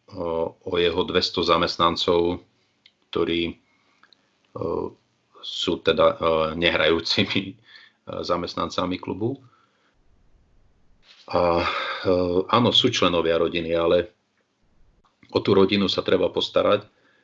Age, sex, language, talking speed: 40-59, male, Slovak, 75 wpm